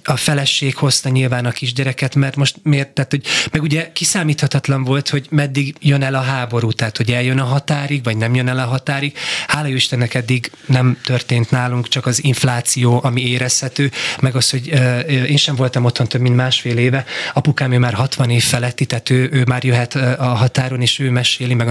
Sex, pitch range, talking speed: male, 125-145 Hz, 200 wpm